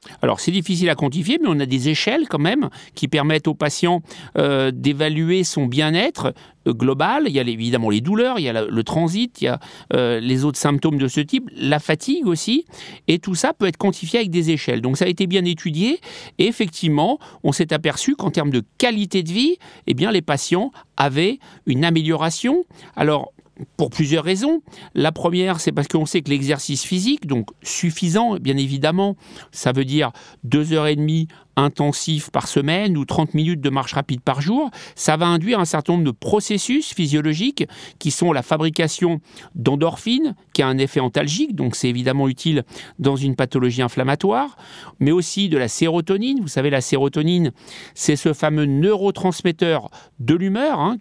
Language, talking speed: French, 185 wpm